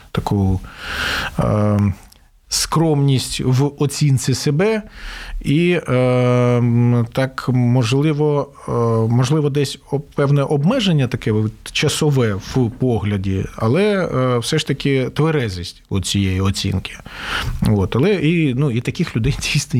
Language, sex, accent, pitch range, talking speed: Ukrainian, male, native, 115-145 Hz, 110 wpm